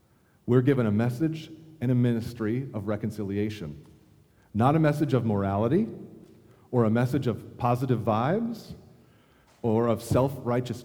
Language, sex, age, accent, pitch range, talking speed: English, male, 40-59, American, 110-145 Hz, 125 wpm